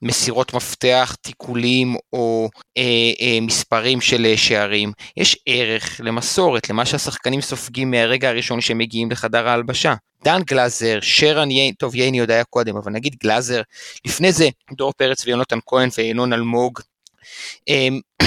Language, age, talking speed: Hebrew, 20-39, 140 wpm